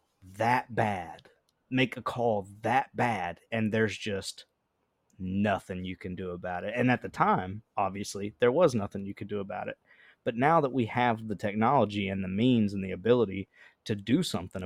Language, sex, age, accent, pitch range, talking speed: English, male, 30-49, American, 95-120 Hz, 185 wpm